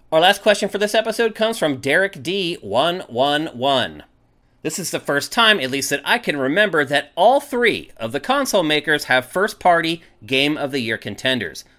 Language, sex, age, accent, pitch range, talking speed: English, male, 30-49, American, 135-205 Hz, 185 wpm